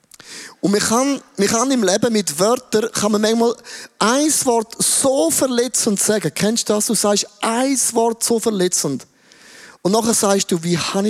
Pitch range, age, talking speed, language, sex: 170-220 Hz, 30-49, 175 wpm, German, male